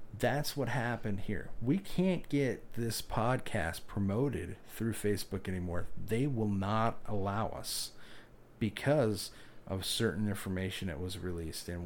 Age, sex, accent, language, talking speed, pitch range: 40-59, male, American, English, 130 wpm, 95-120 Hz